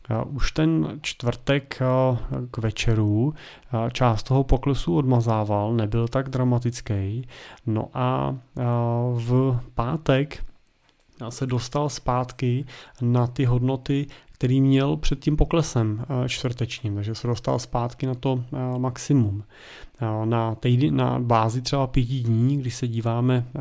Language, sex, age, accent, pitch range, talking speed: Czech, male, 30-49, native, 115-135 Hz, 115 wpm